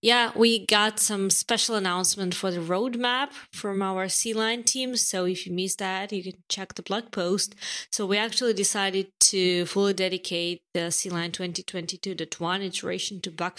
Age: 20-39